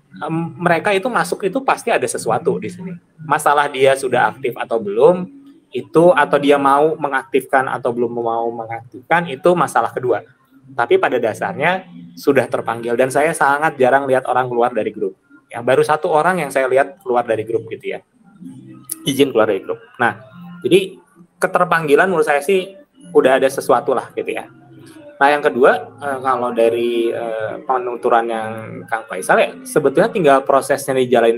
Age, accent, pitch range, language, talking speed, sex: 20-39, native, 125-175 Hz, Indonesian, 165 wpm, male